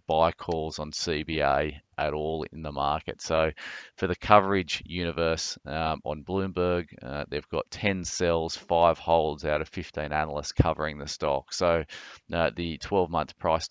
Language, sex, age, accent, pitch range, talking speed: English, male, 30-49, Australian, 75-90 Hz, 160 wpm